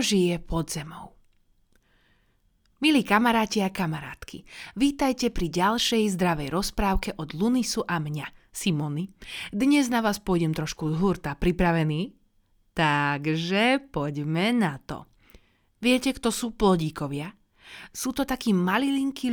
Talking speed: 110 wpm